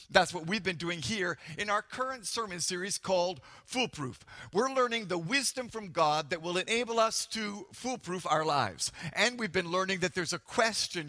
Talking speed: 190 wpm